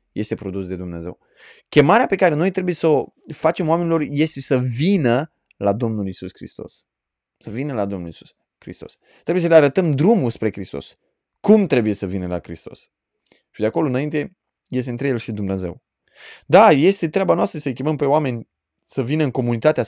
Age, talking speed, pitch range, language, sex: 20-39, 180 wpm, 100-140 Hz, Romanian, male